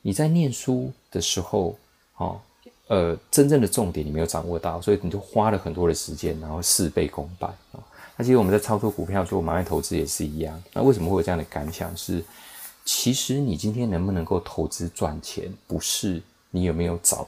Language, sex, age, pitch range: Chinese, male, 20-39, 85-110 Hz